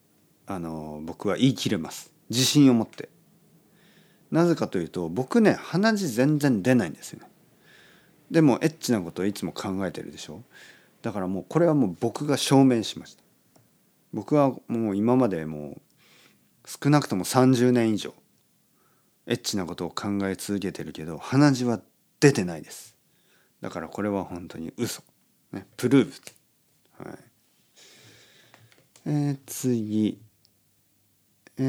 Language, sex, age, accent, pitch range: Japanese, male, 40-59, native, 100-150 Hz